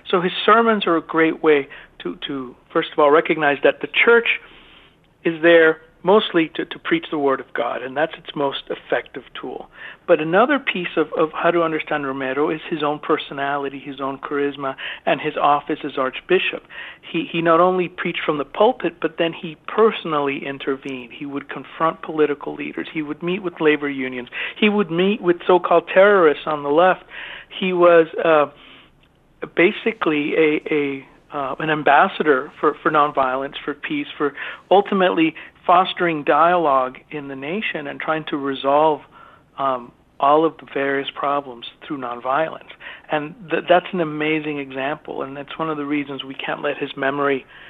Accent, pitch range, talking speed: American, 140-175 Hz, 170 wpm